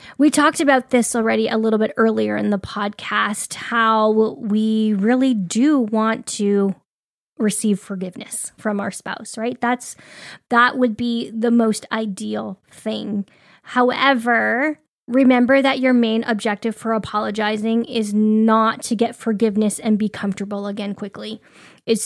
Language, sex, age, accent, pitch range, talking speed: English, female, 10-29, American, 210-240 Hz, 140 wpm